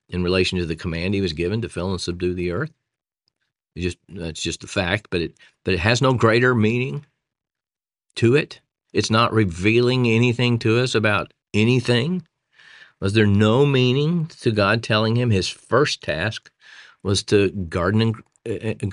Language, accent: English, American